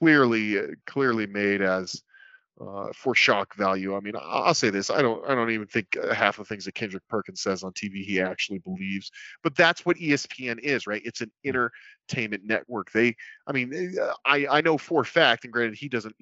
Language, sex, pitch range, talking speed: English, male, 110-140 Hz, 205 wpm